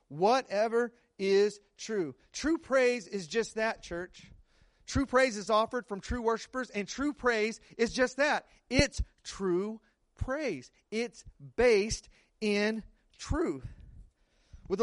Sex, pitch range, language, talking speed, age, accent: male, 190-265 Hz, English, 120 wpm, 40-59, American